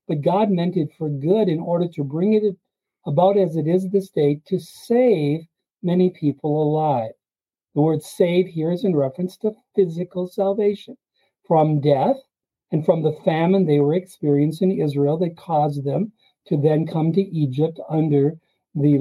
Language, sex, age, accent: English, male, 50-69, American